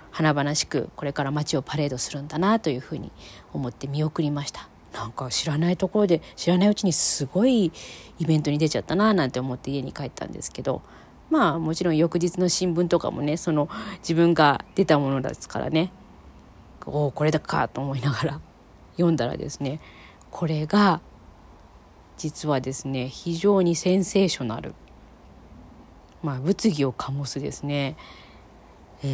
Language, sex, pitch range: Japanese, female, 135-180 Hz